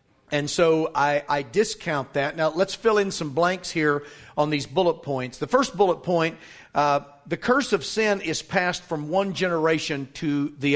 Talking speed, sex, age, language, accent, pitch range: 185 wpm, male, 40-59, English, American, 155-195 Hz